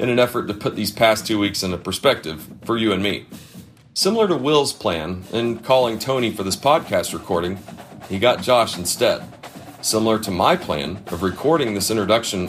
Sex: male